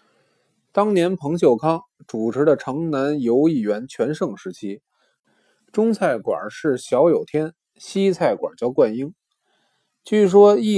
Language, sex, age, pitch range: Chinese, male, 20-39, 145-200 Hz